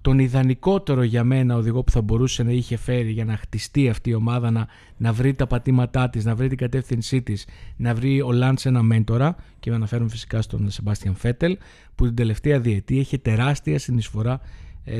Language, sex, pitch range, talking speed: Greek, male, 110-145 Hz, 195 wpm